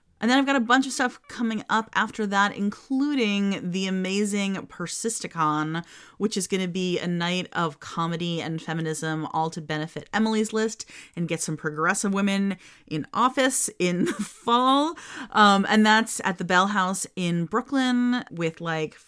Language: English